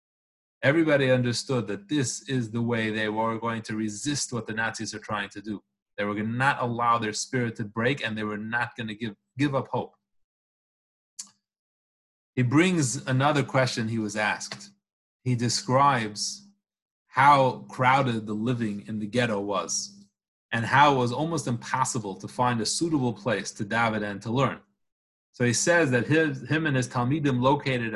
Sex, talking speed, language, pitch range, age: male, 175 wpm, English, 110-135 Hz, 30-49